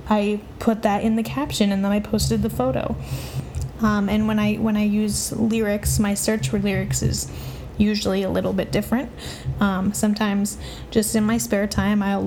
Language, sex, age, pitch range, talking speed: English, female, 10-29, 135-220 Hz, 185 wpm